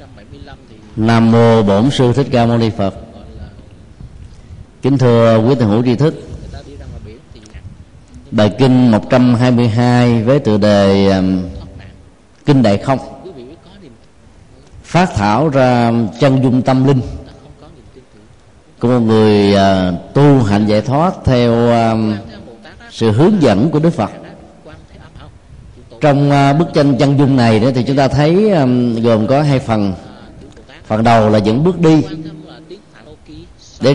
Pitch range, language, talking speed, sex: 110-140 Hz, Vietnamese, 120 wpm, male